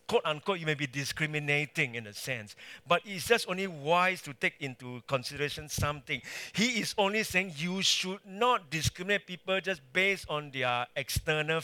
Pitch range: 105-165 Hz